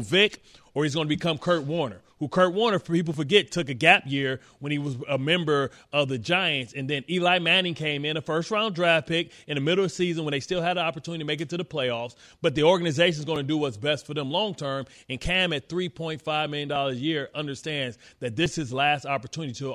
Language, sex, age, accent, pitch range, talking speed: English, male, 30-49, American, 140-175 Hz, 245 wpm